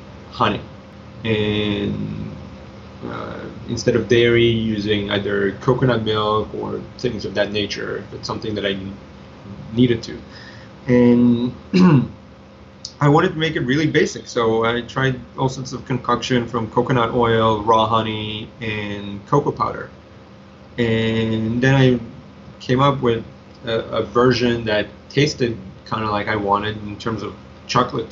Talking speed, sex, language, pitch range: 135 wpm, male, English, 100-125 Hz